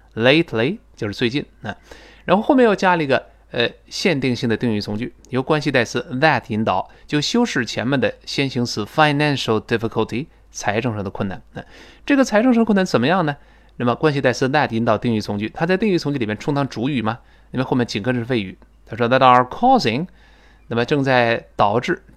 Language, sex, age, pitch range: Chinese, male, 20-39, 115-165 Hz